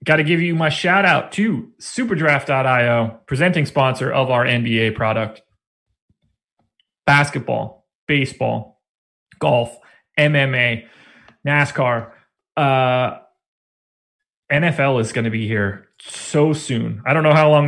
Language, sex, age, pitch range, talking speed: English, male, 30-49, 115-155 Hz, 115 wpm